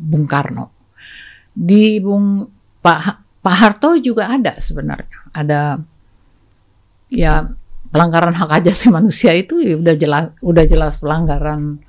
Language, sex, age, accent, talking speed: Indonesian, female, 50-69, native, 115 wpm